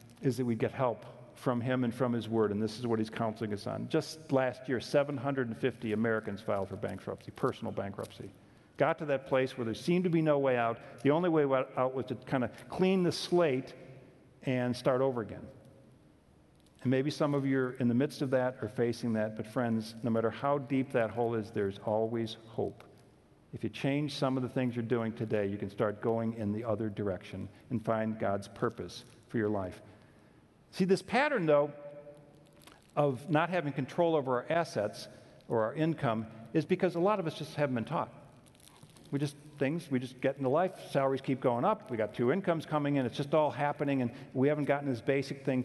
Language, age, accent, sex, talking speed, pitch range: English, 50-69, American, male, 210 wpm, 115-145 Hz